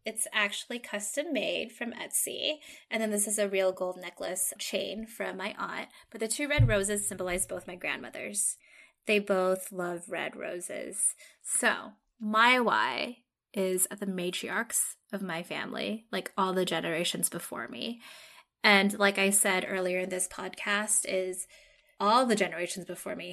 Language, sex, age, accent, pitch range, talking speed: English, female, 10-29, American, 190-275 Hz, 160 wpm